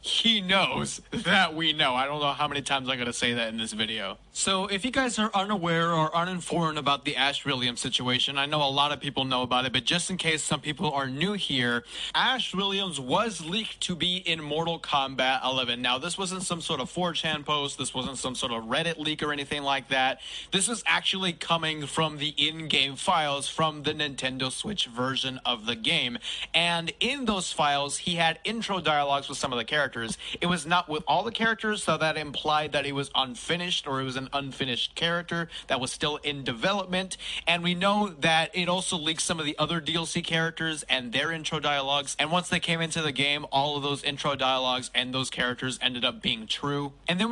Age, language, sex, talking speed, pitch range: 30-49, English, male, 215 wpm, 140-175 Hz